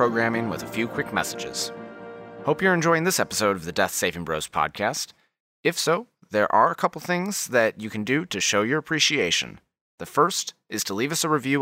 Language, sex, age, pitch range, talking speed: English, male, 30-49, 105-155 Hz, 205 wpm